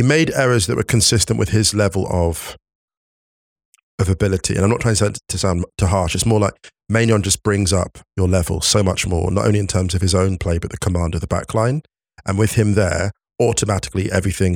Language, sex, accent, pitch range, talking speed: English, male, British, 95-115 Hz, 220 wpm